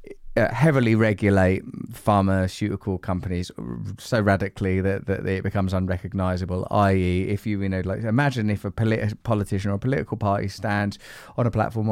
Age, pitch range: 20-39, 100-120 Hz